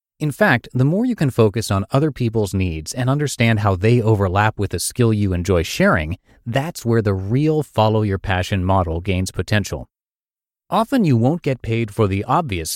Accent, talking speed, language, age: American, 190 wpm, English, 30-49